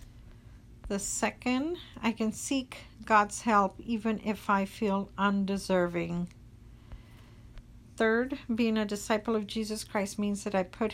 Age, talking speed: 50-69, 125 wpm